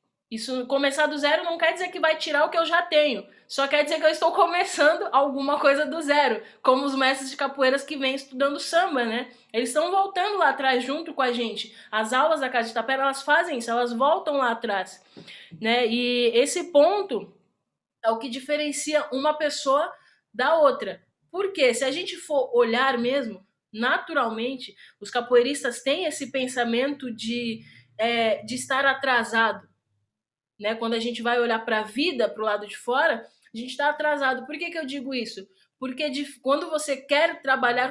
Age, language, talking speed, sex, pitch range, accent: 20-39, Portuguese, 185 wpm, female, 235-295 Hz, Brazilian